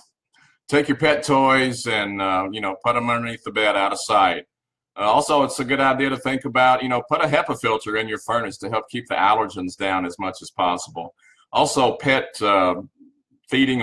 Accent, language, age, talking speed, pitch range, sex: American, English, 40-59, 210 wpm, 100-135 Hz, male